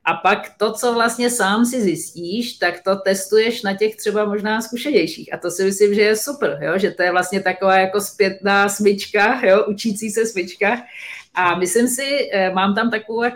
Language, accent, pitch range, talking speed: Czech, native, 185-220 Hz, 180 wpm